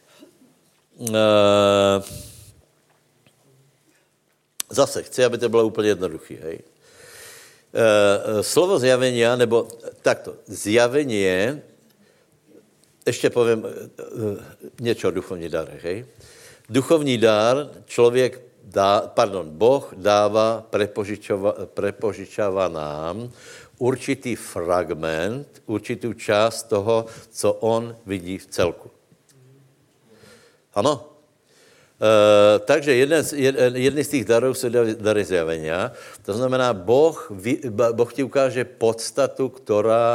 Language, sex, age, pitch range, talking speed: Slovak, male, 70-89, 105-130 Hz, 95 wpm